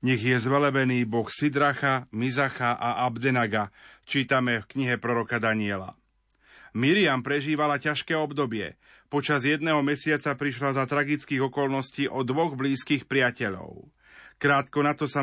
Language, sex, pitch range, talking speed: Slovak, male, 130-150 Hz, 125 wpm